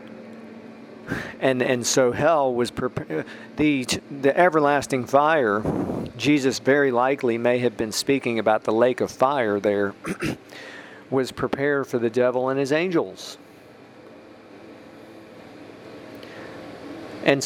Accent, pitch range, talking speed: American, 120-150 Hz, 110 wpm